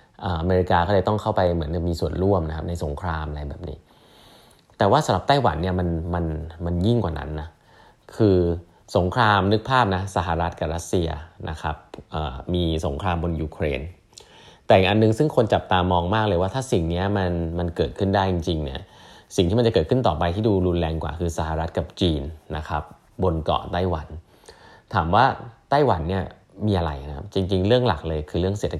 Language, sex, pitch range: English, male, 80-105 Hz